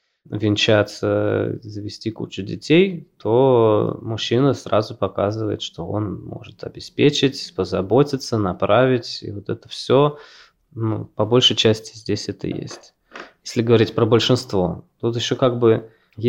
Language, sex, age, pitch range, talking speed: Russian, male, 20-39, 105-120 Hz, 120 wpm